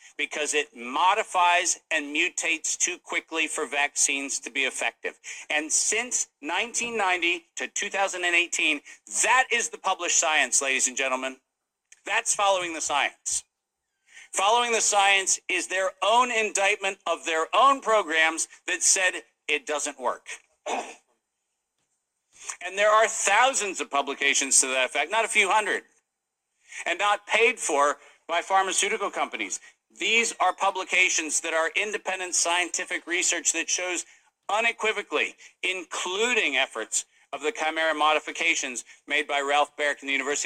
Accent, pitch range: American, 145-205 Hz